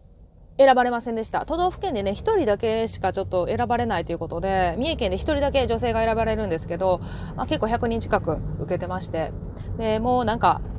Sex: female